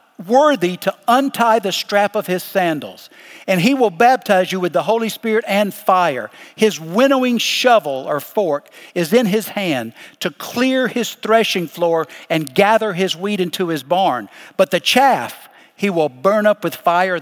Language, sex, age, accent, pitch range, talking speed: English, male, 60-79, American, 185-245 Hz, 170 wpm